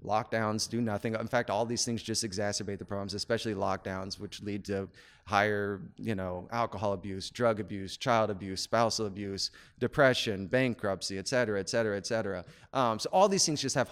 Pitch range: 105-120 Hz